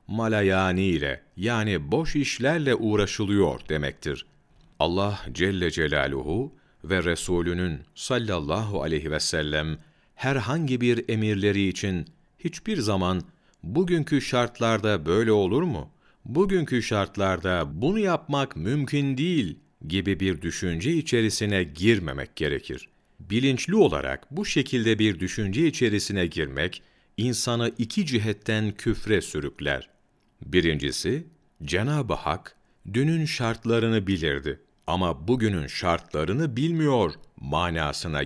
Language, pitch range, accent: Turkish, 90-125 Hz, native